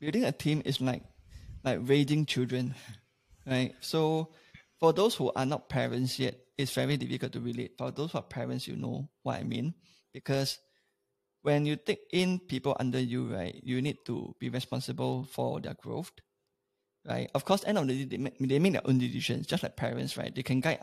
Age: 20-39